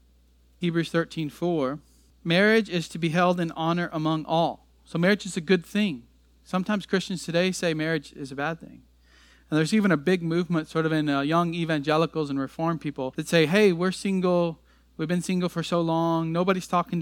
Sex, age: male, 40-59